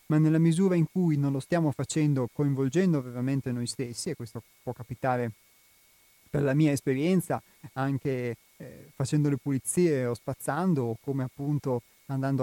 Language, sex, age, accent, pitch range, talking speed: Italian, male, 30-49, native, 125-155 Hz, 155 wpm